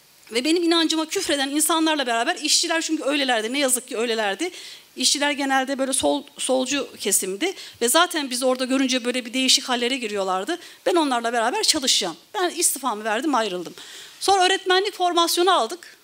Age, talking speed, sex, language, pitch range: 40-59, 155 wpm, female, Turkish, 245-345 Hz